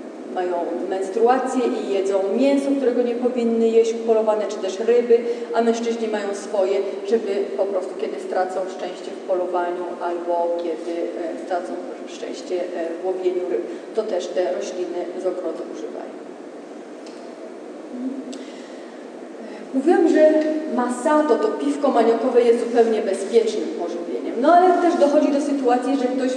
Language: Polish